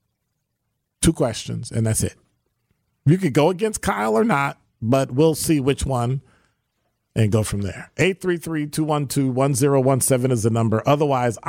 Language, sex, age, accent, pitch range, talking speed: English, male, 50-69, American, 110-150 Hz, 185 wpm